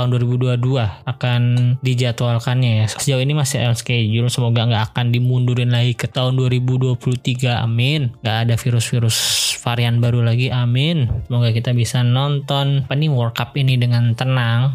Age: 20-39